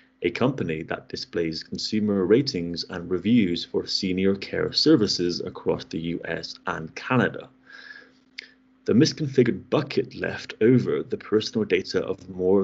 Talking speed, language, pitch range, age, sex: 130 wpm, English, 90-125 Hz, 30-49, male